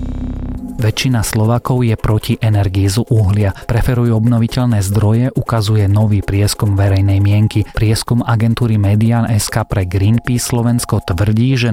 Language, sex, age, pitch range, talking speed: Slovak, male, 30-49, 100-115 Hz, 120 wpm